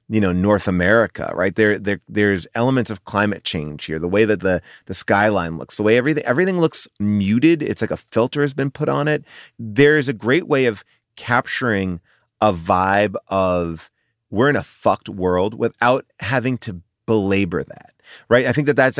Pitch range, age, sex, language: 95-125 Hz, 30-49, male, English